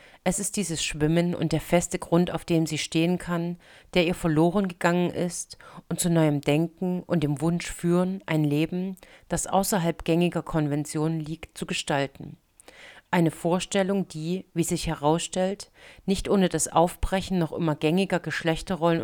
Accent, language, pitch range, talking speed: German, German, 160-180 Hz, 155 wpm